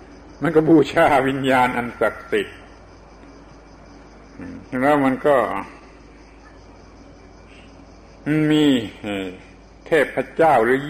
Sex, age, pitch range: male, 60-79, 105-140 Hz